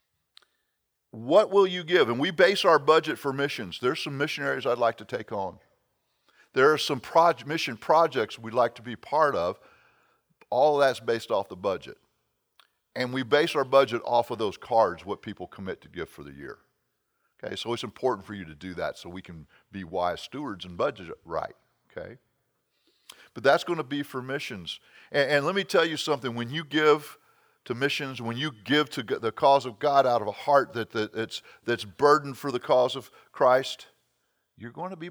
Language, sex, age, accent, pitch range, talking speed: English, male, 50-69, American, 100-145 Hz, 200 wpm